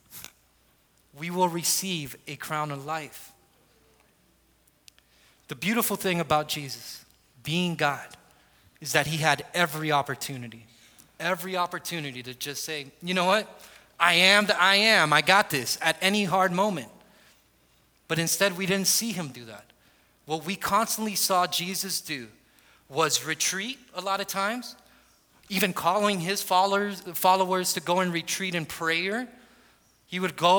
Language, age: English, 30-49